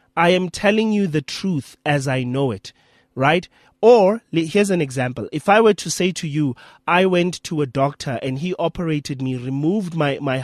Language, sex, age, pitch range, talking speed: English, male, 30-49, 135-180 Hz, 195 wpm